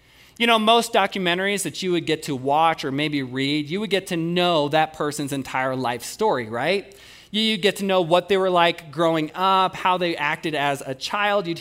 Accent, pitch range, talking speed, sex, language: American, 135-185 Hz, 210 wpm, male, English